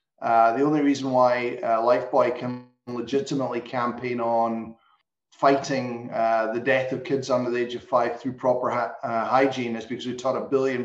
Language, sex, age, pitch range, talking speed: English, male, 30-49, 120-135 Hz, 185 wpm